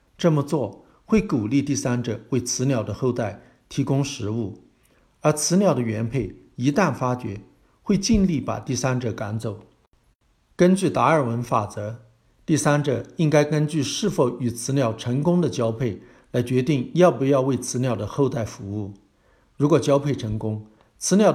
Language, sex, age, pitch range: Chinese, male, 50-69, 115-150 Hz